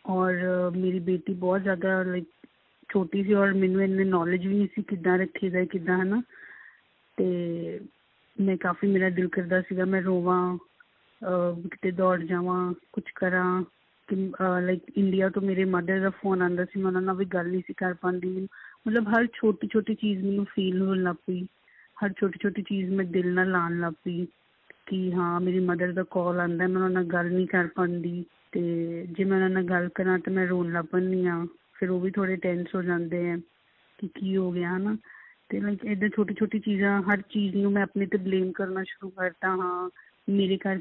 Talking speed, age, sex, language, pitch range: 155 wpm, 30-49, female, Punjabi, 180-195 Hz